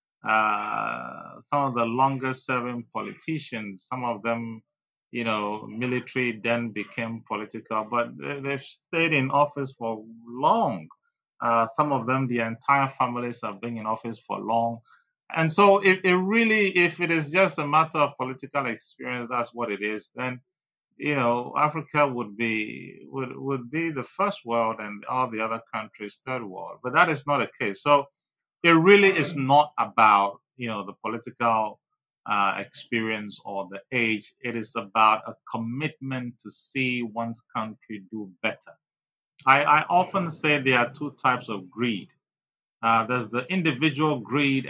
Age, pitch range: 30-49, 115-145 Hz